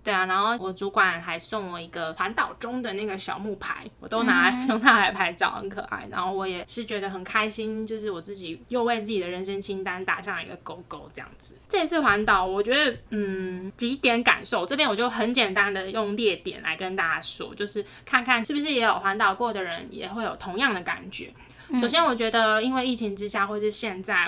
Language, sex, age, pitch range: Chinese, female, 10-29, 190-235 Hz